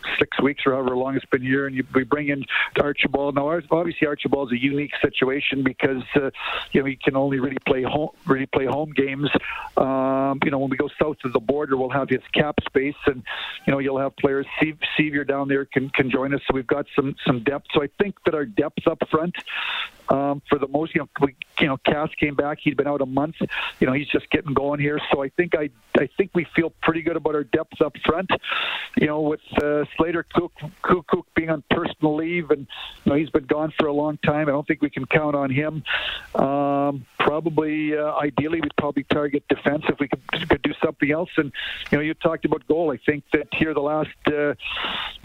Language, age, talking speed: English, 50-69, 225 wpm